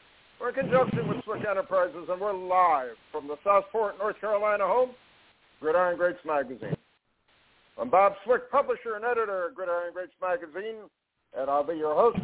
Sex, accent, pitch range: male, American, 180-245 Hz